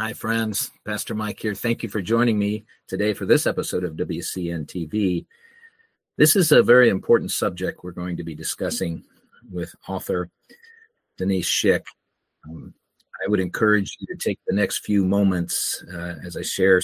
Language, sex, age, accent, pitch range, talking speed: English, male, 50-69, American, 85-105 Hz, 165 wpm